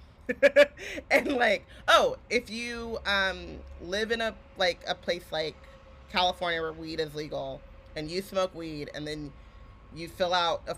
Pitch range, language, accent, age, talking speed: 145-190 Hz, English, American, 20-39, 155 wpm